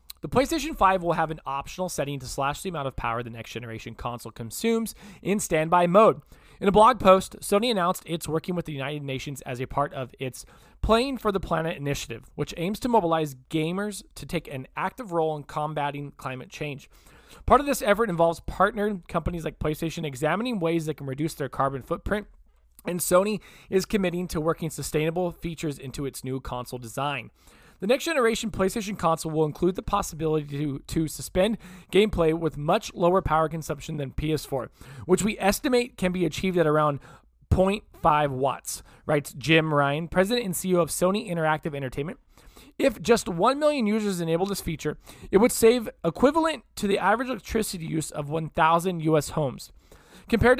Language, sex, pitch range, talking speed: English, male, 145-195 Hz, 180 wpm